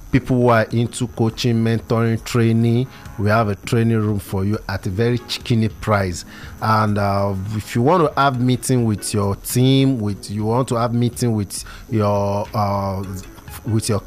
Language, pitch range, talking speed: English, 100-120 Hz, 175 wpm